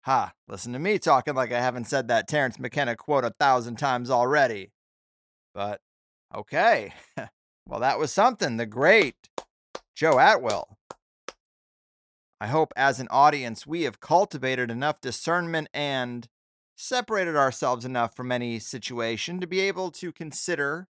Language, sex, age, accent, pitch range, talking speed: English, male, 30-49, American, 125-175 Hz, 140 wpm